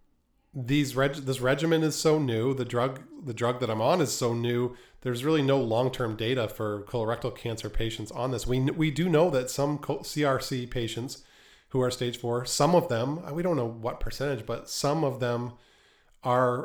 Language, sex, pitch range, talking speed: English, male, 115-135 Hz, 190 wpm